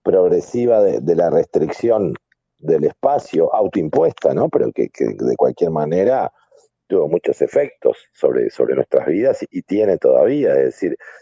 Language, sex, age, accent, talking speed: English, male, 50-69, Argentinian, 150 wpm